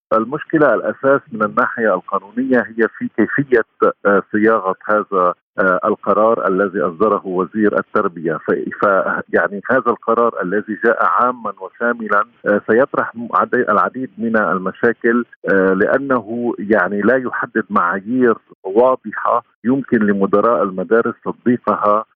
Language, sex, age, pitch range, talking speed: Arabic, male, 50-69, 100-120 Hz, 115 wpm